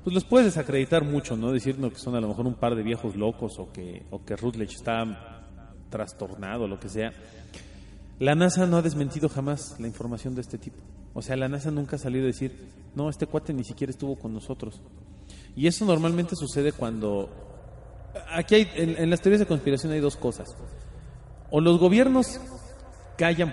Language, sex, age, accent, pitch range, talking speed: Spanish, male, 40-59, Mexican, 110-155 Hz, 190 wpm